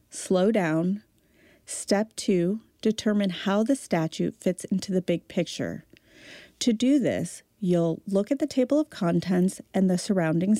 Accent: American